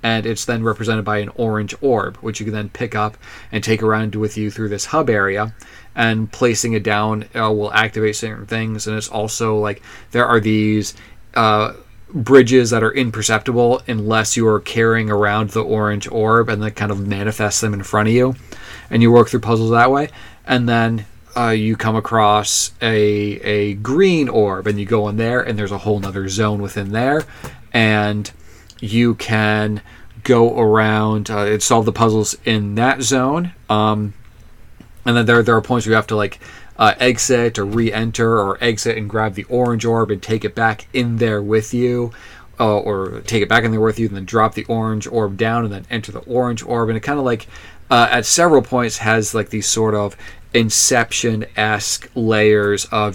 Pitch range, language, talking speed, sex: 105-115 Hz, English, 200 wpm, male